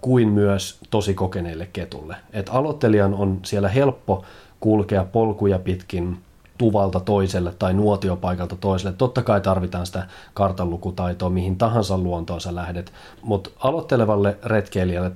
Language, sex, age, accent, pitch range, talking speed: Finnish, male, 30-49, native, 90-105 Hz, 125 wpm